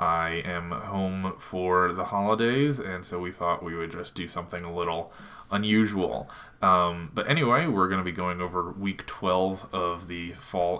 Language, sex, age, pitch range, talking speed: English, male, 20-39, 85-105 Hz, 180 wpm